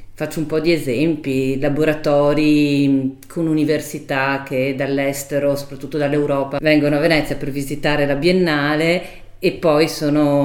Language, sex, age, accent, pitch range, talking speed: English, female, 40-59, Italian, 140-155 Hz, 125 wpm